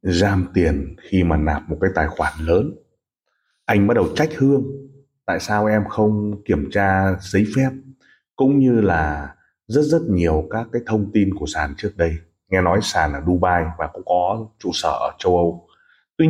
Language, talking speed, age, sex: Vietnamese, 190 wpm, 30-49, male